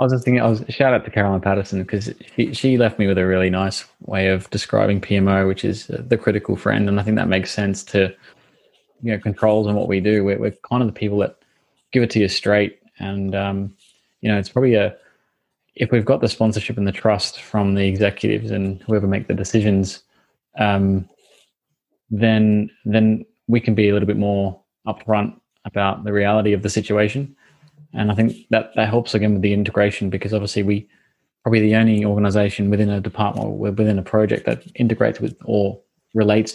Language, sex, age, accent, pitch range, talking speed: English, male, 20-39, Australian, 100-115 Hz, 205 wpm